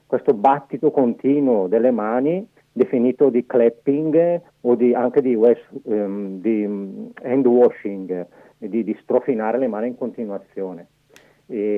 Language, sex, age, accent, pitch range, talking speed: Italian, male, 50-69, native, 110-140 Hz, 125 wpm